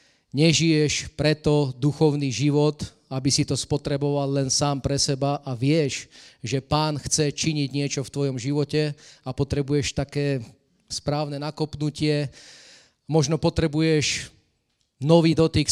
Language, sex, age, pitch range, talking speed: English, male, 30-49, 130-145 Hz, 120 wpm